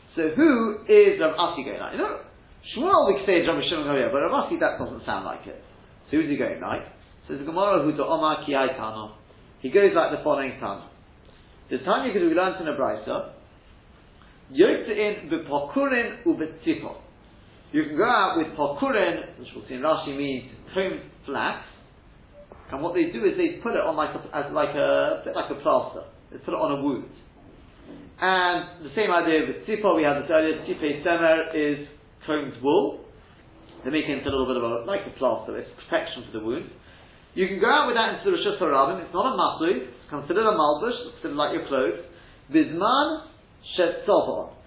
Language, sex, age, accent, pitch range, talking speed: English, male, 40-59, British, 130-215 Hz, 190 wpm